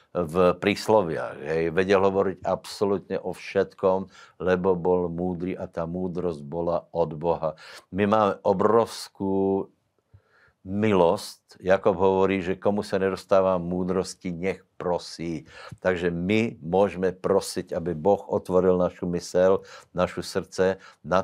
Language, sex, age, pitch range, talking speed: Slovak, male, 60-79, 85-95 Hz, 115 wpm